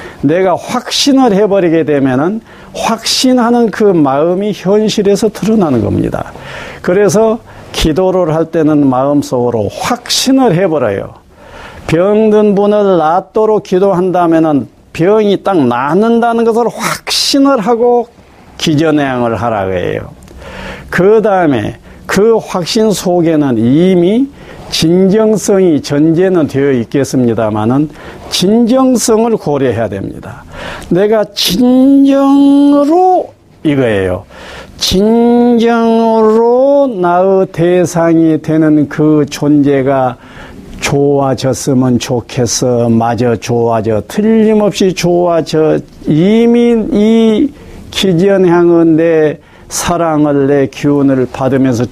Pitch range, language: 145-220 Hz, Korean